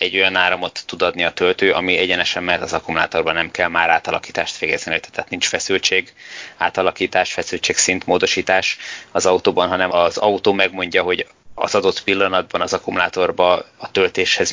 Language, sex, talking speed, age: Hungarian, male, 155 wpm, 20-39